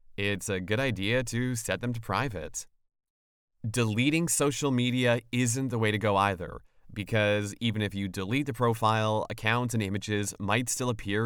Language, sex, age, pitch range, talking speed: English, male, 30-49, 105-120 Hz, 165 wpm